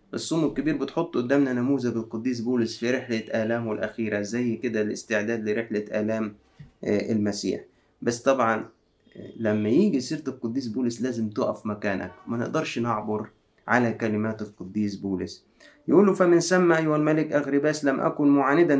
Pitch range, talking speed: 120-165 Hz, 135 wpm